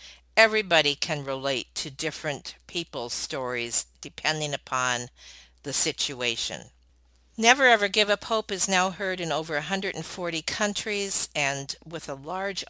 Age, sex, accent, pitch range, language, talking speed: 50-69, female, American, 125-185 Hz, English, 130 wpm